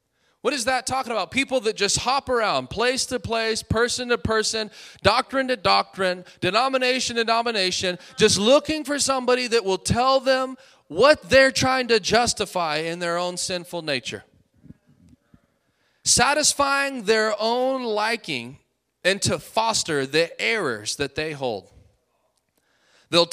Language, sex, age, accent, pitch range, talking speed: English, male, 30-49, American, 150-225 Hz, 135 wpm